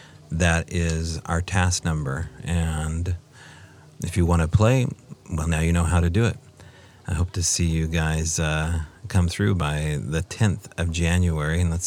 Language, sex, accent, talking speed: English, male, American, 175 wpm